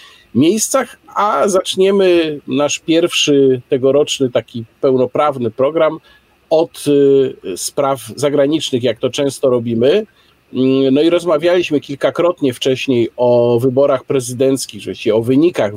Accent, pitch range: native, 120-160 Hz